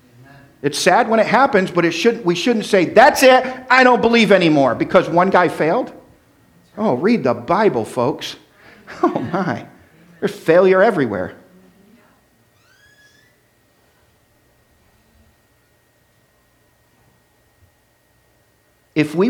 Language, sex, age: English, male, 50-69